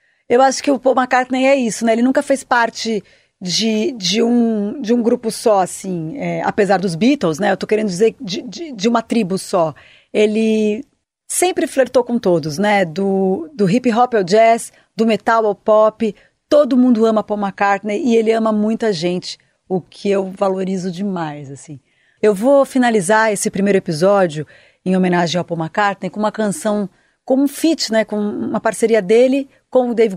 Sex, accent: female, Brazilian